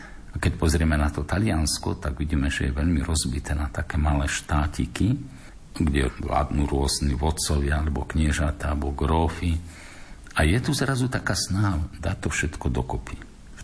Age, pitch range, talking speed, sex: 50-69, 70-85 Hz, 155 wpm, male